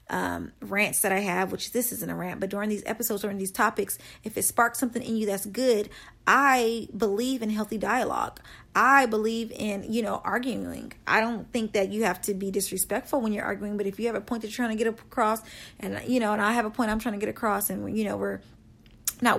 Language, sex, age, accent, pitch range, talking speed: English, female, 40-59, American, 200-230 Hz, 245 wpm